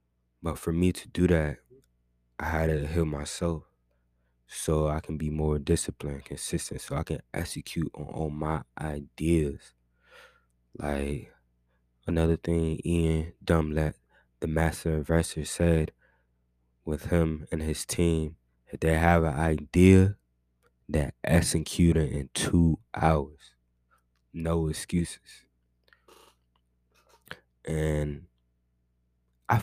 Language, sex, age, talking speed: English, male, 20-39, 110 wpm